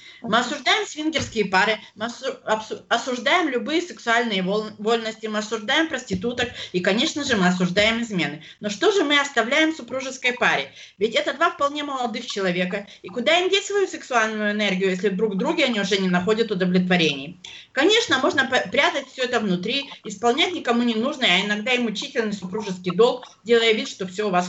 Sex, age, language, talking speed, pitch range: female, 30-49, English, 170 wpm, 200-280 Hz